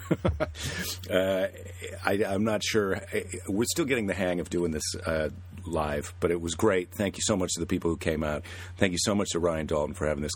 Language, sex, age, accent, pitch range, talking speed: English, male, 50-69, American, 80-95 Hz, 225 wpm